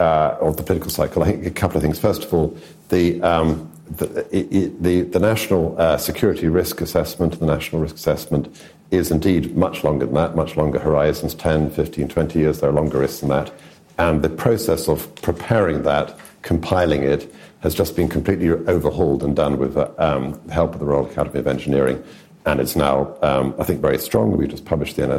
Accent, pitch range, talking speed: British, 75-85 Hz, 205 wpm